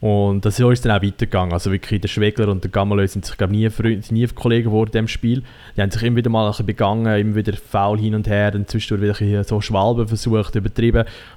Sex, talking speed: male, 260 wpm